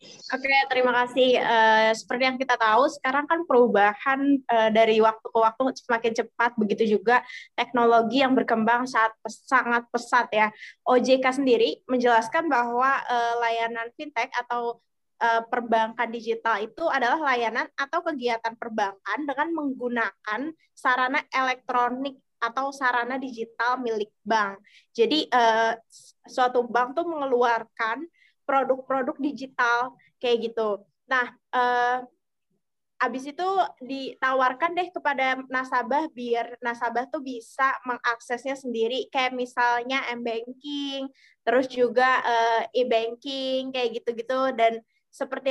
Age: 20-39